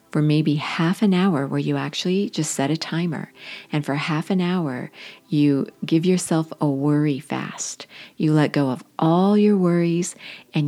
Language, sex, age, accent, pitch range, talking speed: English, female, 50-69, American, 145-175 Hz, 175 wpm